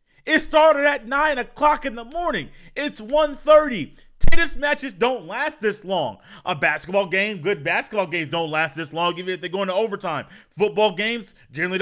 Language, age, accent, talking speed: English, 30-49, American, 180 wpm